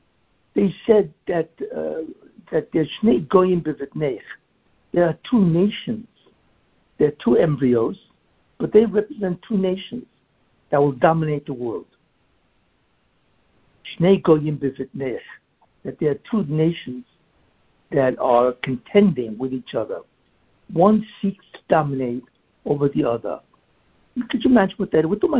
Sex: male